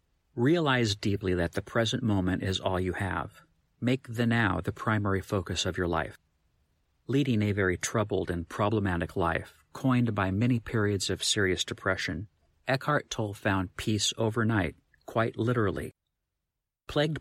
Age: 50-69